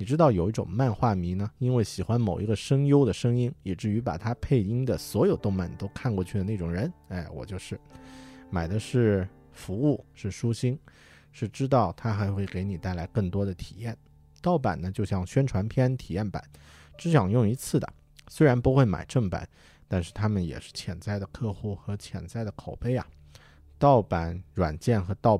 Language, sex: Chinese, male